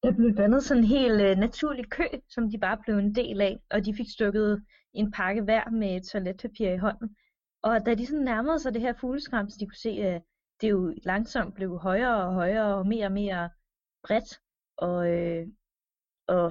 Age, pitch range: 20-39, 190-235 Hz